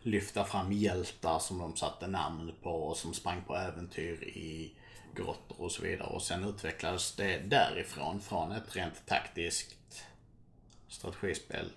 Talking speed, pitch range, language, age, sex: 145 wpm, 90-115 Hz, Swedish, 50-69, male